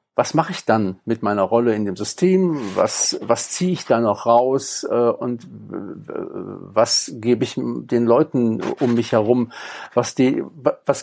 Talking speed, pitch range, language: 150 wpm, 115-145 Hz, German